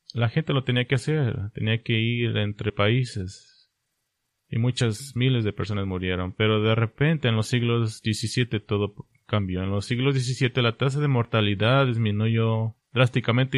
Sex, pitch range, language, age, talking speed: male, 105-130 Hz, English, 30-49, 160 wpm